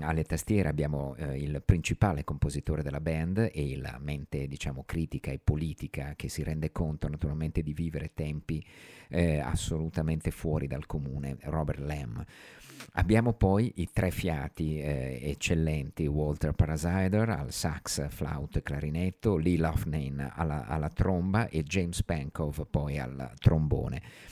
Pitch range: 75-90 Hz